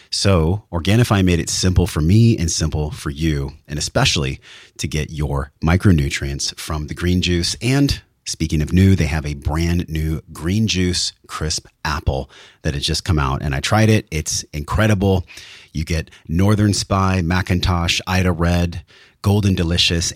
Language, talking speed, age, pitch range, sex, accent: English, 160 wpm, 30-49, 80-105 Hz, male, American